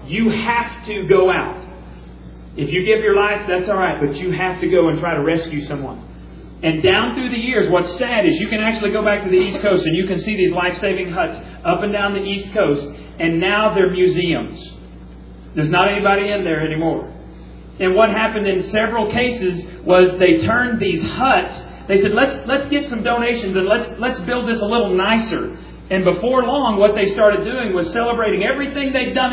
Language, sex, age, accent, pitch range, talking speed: English, male, 40-59, American, 180-220 Hz, 205 wpm